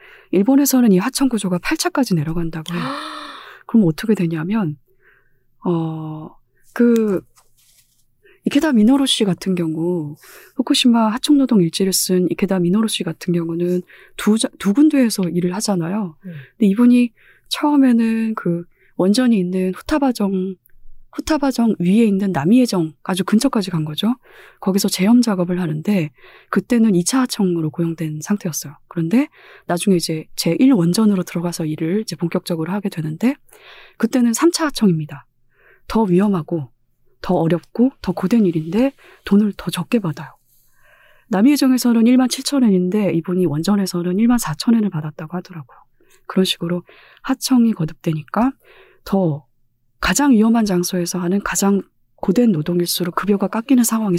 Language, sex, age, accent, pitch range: Korean, female, 20-39, native, 170-235 Hz